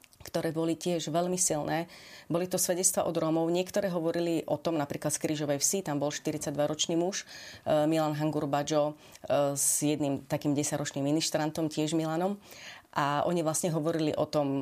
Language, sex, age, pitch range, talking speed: Slovak, female, 30-49, 145-160 Hz, 155 wpm